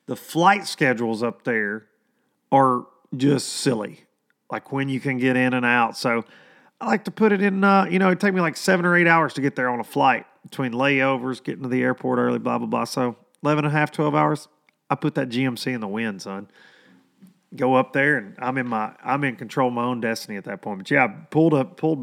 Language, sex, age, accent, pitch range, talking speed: English, male, 40-59, American, 120-160 Hz, 235 wpm